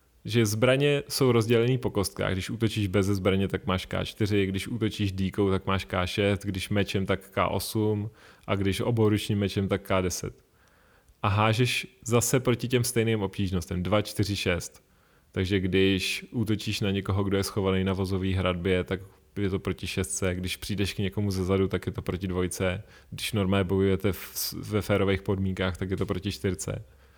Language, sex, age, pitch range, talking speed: Czech, male, 30-49, 95-115 Hz, 170 wpm